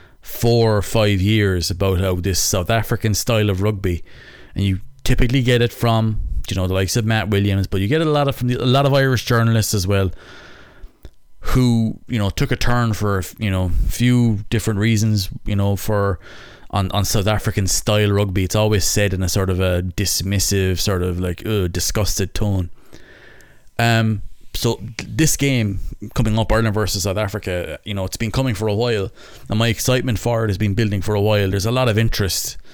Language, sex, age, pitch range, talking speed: English, male, 20-39, 95-115 Hz, 200 wpm